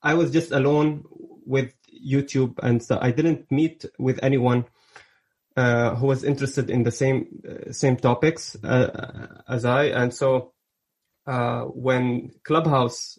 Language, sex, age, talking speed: English, male, 20-39, 140 wpm